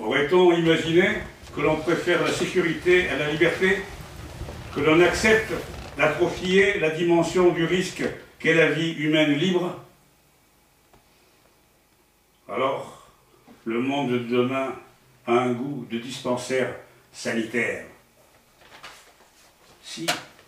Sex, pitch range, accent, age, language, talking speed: male, 125-175 Hz, French, 60-79, English, 105 wpm